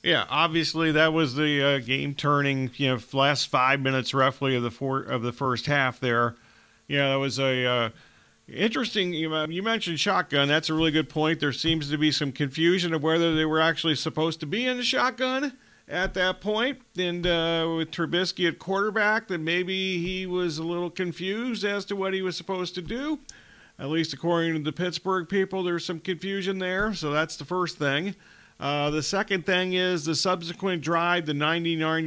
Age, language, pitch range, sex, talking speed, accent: 40-59, English, 140-180 Hz, male, 195 wpm, American